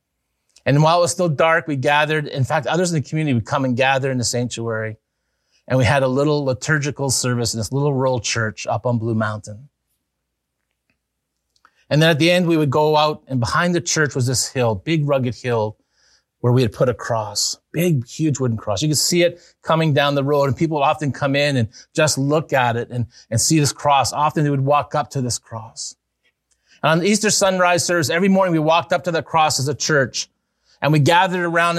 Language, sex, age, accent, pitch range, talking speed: English, male, 30-49, American, 125-160 Hz, 225 wpm